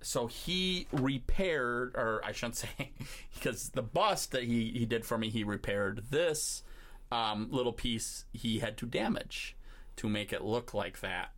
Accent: American